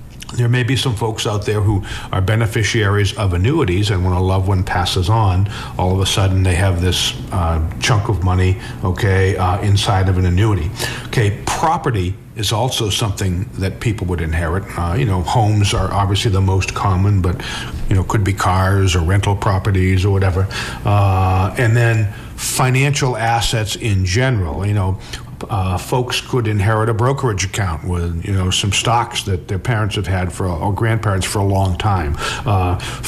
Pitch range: 95-115 Hz